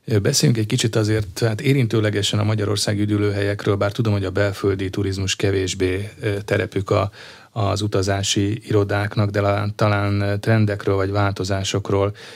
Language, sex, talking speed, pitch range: Hungarian, male, 125 wpm, 95-105 Hz